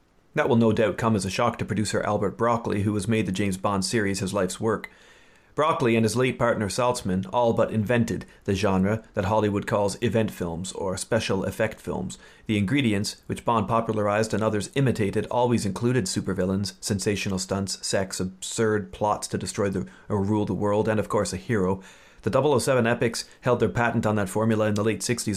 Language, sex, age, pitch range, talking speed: English, male, 40-59, 100-115 Hz, 195 wpm